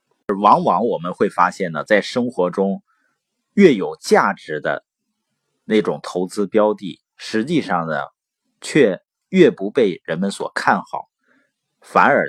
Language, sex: Chinese, male